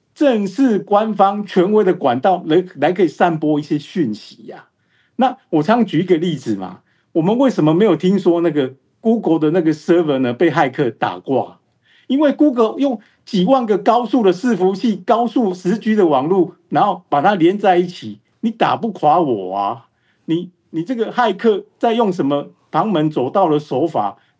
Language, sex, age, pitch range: Chinese, male, 50-69, 160-230 Hz